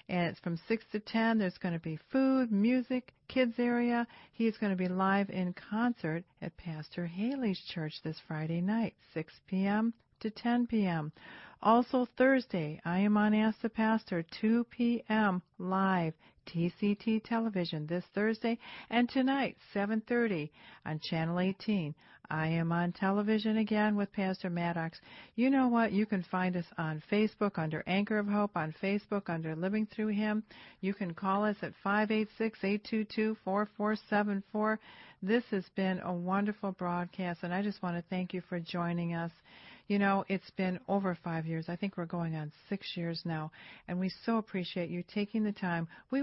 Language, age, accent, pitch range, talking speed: English, 50-69, American, 175-220 Hz, 165 wpm